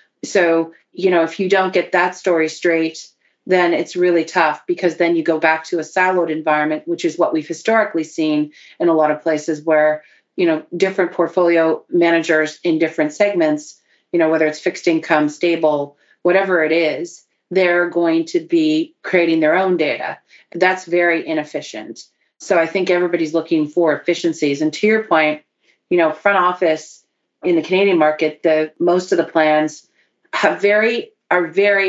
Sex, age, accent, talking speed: female, 40-59, American, 175 wpm